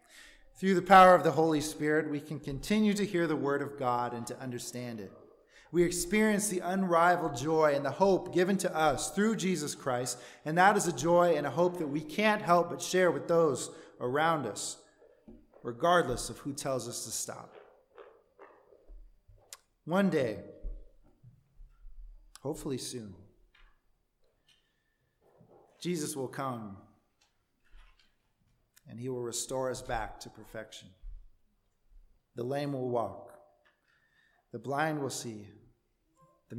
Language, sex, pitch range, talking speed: English, male, 120-175 Hz, 135 wpm